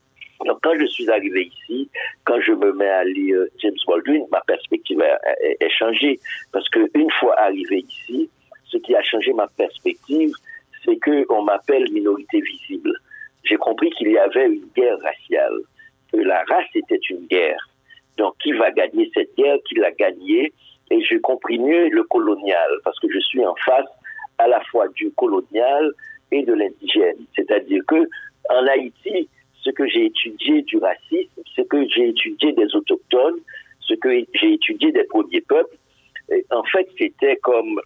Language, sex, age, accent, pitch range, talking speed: French, male, 50-69, French, 330-405 Hz, 165 wpm